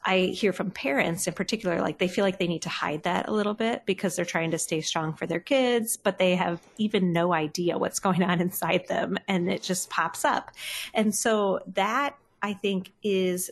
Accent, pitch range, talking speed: American, 175-210 Hz, 220 wpm